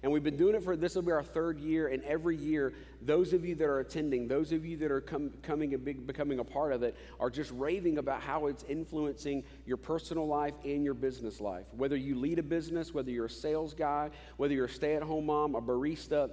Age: 40-59